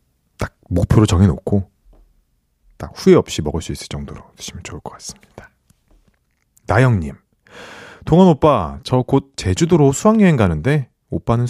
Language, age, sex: Korean, 30-49, male